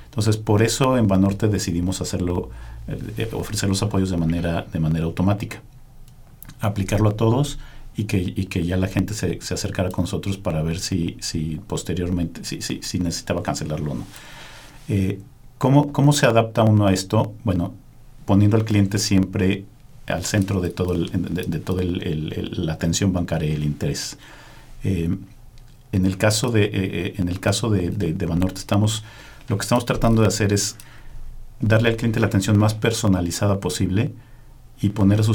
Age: 50-69